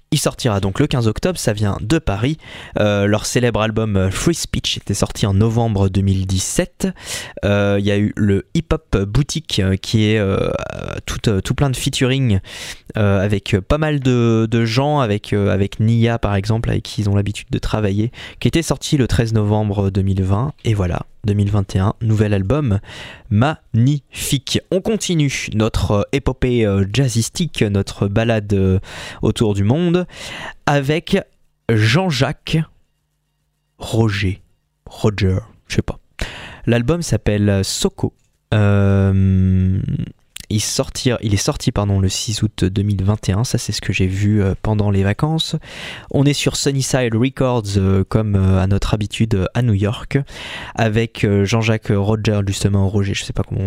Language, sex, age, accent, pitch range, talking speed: French, male, 20-39, French, 100-130 Hz, 150 wpm